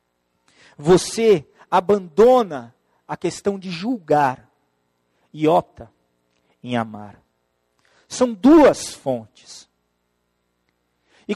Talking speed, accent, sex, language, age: 75 wpm, Brazilian, male, Portuguese, 40-59